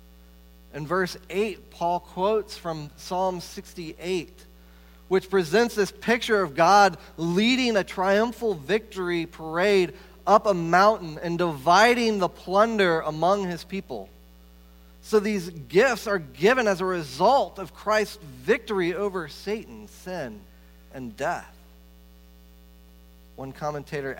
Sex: male